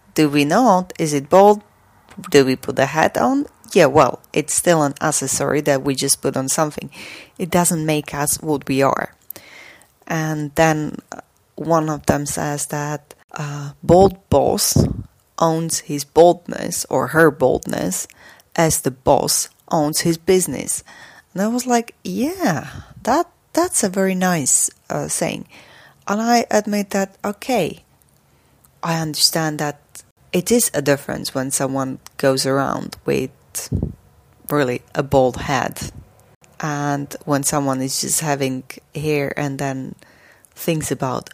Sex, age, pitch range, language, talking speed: female, 30-49, 135-165 Hz, English, 140 wpm